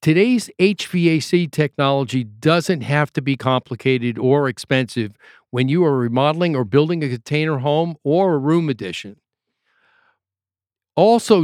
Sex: male